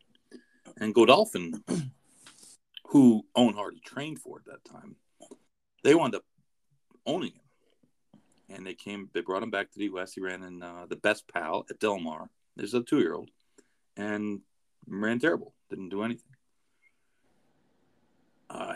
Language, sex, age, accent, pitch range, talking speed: English, male, 40-59, American, 95-125 Hz, 150 wpm